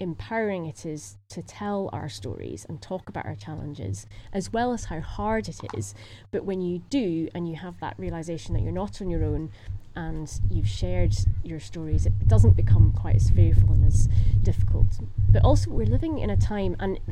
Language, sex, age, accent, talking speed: English, female, 20-39, British, 195 wpm